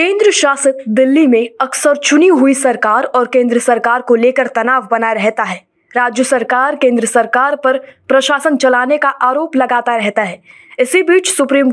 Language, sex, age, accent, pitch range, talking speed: Hindi, female, 20-39, native, 245-290 Hz, 165 wpm